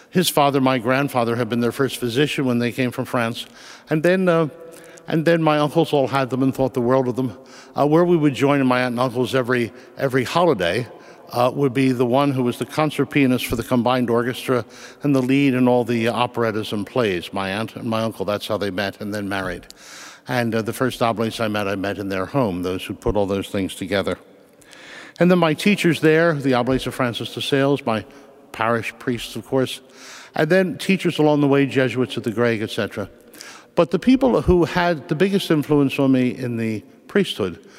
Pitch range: 115-145 Hz